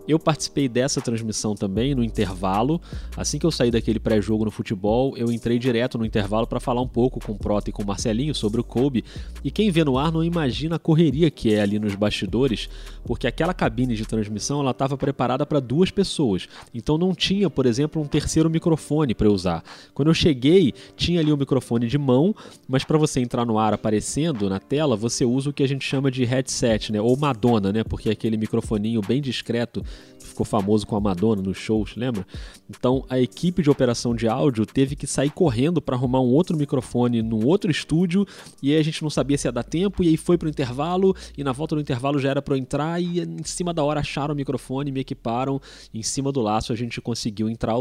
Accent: Brazilian